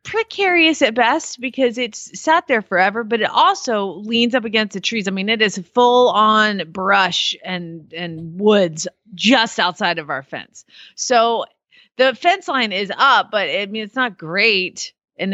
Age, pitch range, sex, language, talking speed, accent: 30-49, 190-255 Hz, female, English, 170 wpm, American